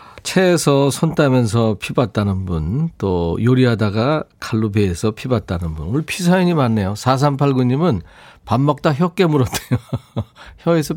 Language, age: Korean, 40-59